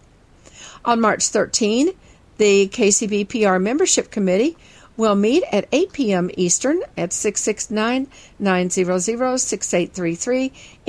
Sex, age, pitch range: female, 50-69, 190-255 Hz